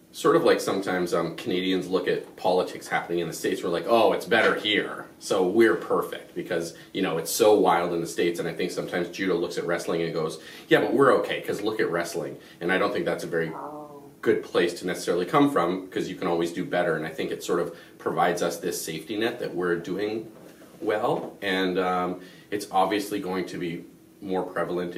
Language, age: English, 30-49